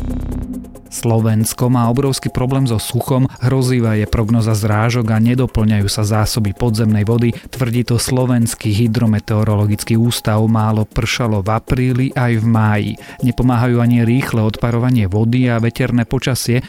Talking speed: 130 wpm